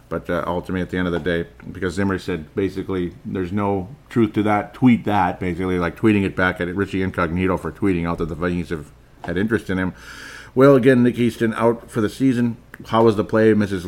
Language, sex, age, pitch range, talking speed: English, male, 40-59, 90-120 Hz, 225 wpm